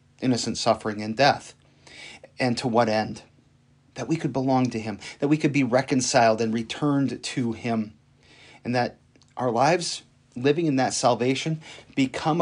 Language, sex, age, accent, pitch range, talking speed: English, male, 40-59, American, 115-145 Hz, 155 wpm